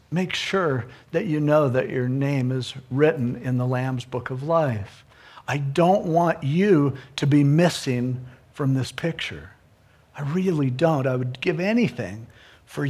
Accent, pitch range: American, 130-170 Hz